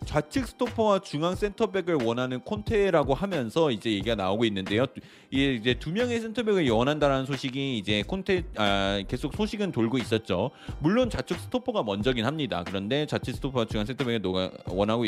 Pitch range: 110-170 Hz